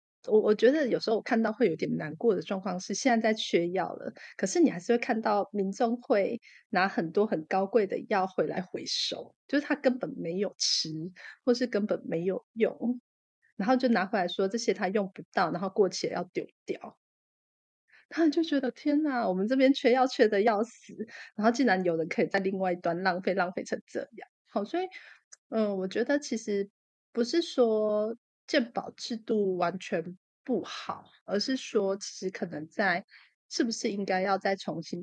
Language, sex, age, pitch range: Chinese, female, 30-49, 185-235 Hz